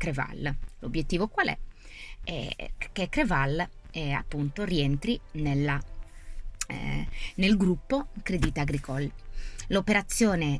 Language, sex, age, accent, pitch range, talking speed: Italian, female, 20-39, native, 140-180 Hz, 95 wpm